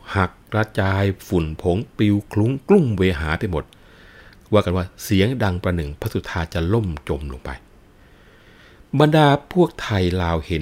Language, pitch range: Thai, 85-105 Hz